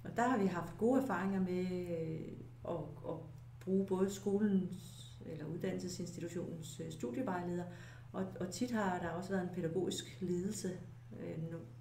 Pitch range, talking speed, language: 160-200 Hz, 130 wpm, Danish